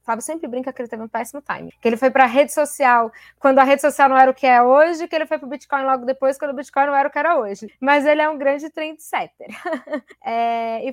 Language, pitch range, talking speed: Portuguese, 220-280 Hz, 275 wpm